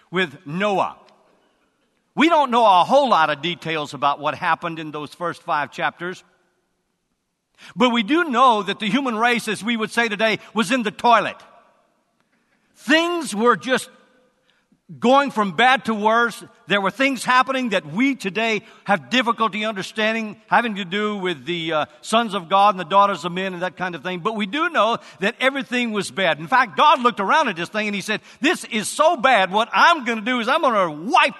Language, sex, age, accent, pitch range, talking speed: English, male, 50-69, American, 200-265 Hz, 200 wpm